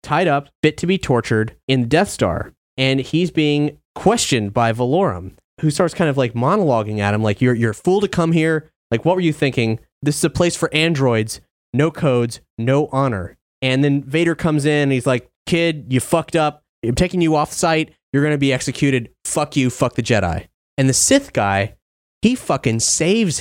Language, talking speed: English, 205 wpm